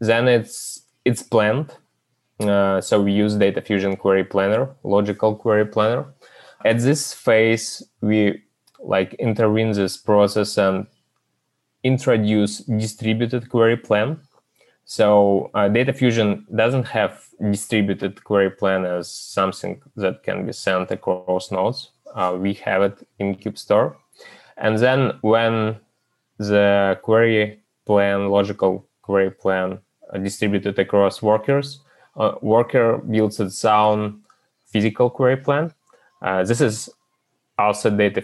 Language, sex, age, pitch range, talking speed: English, male, 20-39, 100-115 Hz, 120 wpm